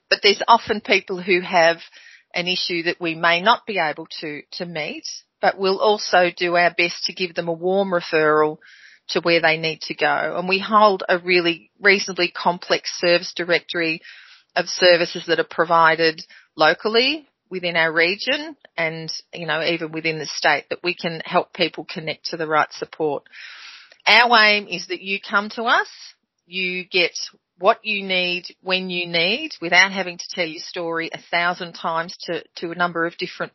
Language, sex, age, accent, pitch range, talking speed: English, female, 40-59, Australian, 170-195 Hz, 180 wpm